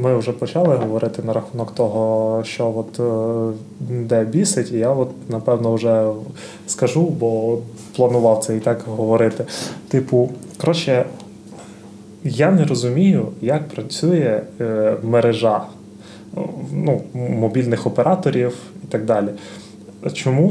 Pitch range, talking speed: 115-155 Hz, 110 wpm